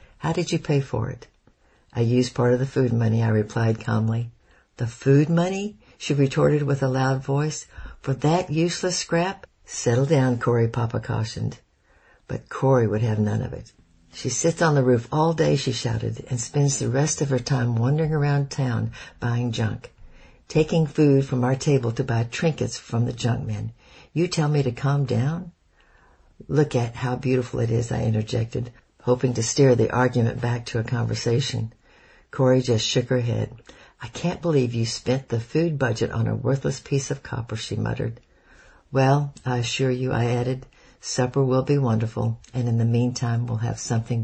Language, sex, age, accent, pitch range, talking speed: English, female, 60-79, American, 115-135 Hz, 185 wpm